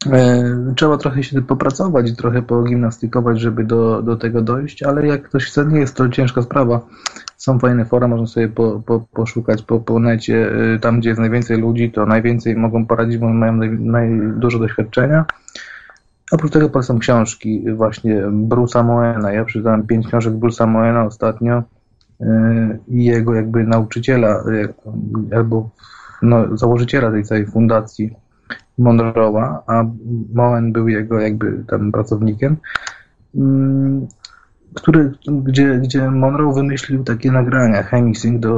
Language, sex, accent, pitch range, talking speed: Polish, male, native, 110-120 Hz, 135 wpm